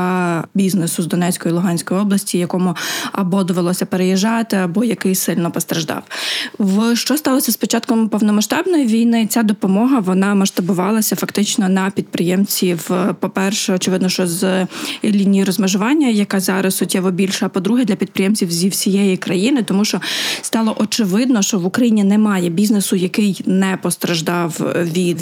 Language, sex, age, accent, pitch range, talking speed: Ukrainian, female, 20-39, native, 185-215 Hz, 135 wpm